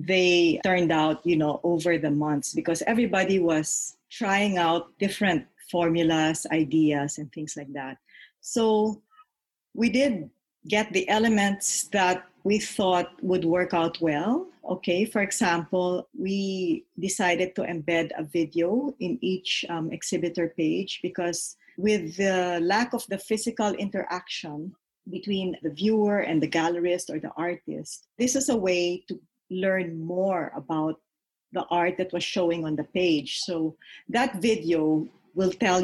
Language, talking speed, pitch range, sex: English, 140 wpm, 170-205 Hz, female